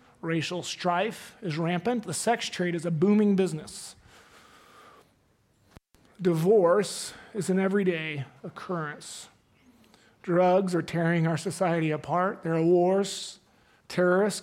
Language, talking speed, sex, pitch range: English, 110 wpm, male, 170-205 Hz